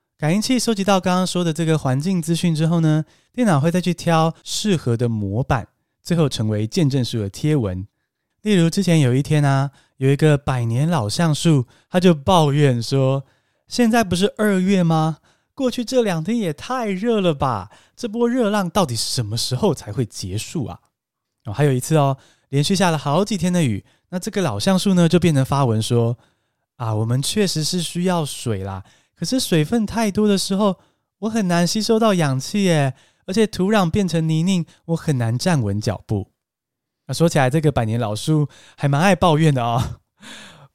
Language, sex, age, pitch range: Chinese, male, 20-39, 125-185 Hz